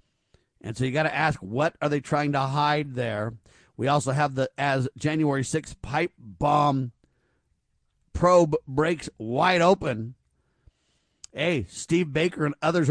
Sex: male